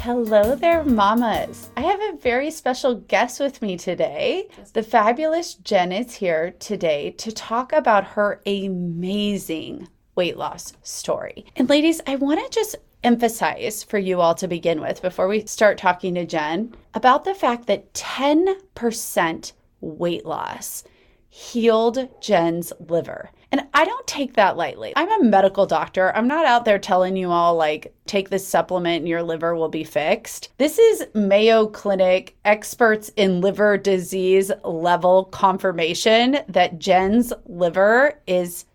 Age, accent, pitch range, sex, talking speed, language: 30-49, American, 185-275 Hz, female, 150 wpm, English